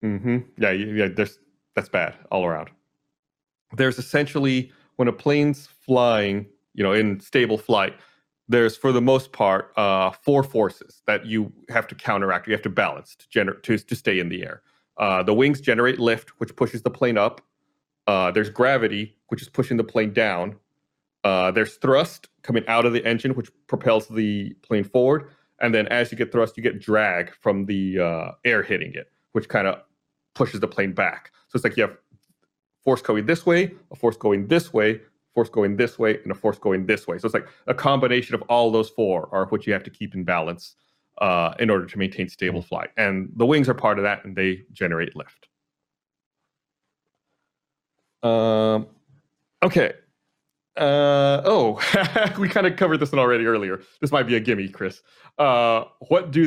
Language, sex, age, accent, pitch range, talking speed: English, male, 30-49, American, 105-135 Hz, 190 wpm